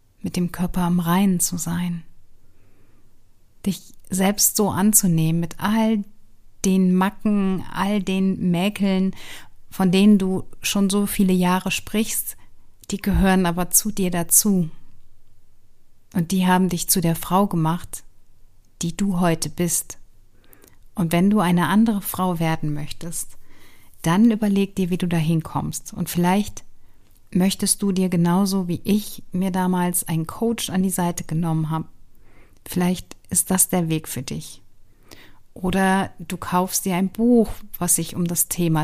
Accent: German